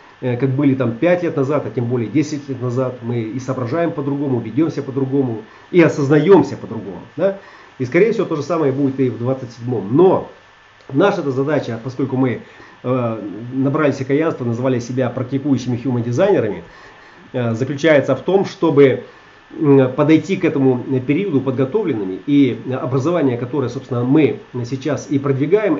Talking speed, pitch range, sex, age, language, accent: 140 wpm, 130-155 Hz, male, 40-59, Russian, native